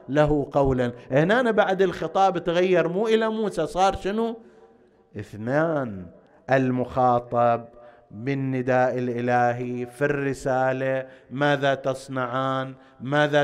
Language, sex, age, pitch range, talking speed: Arabic, male, 50-69, 125-175 Hz, 90 wpm